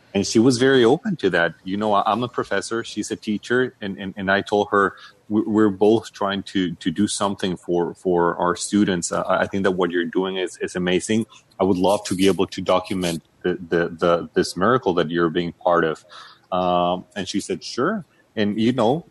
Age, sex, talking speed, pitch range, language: 30-49, male, 210 wpm, 95-115 Hz, English